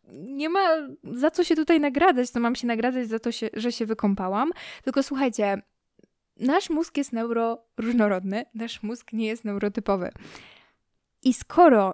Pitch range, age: 220-245 Hz, 10-29